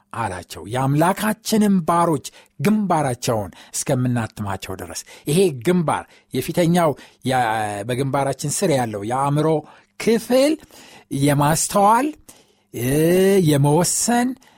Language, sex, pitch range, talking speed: Amharic, male, 135-200 Hz, 65 wpm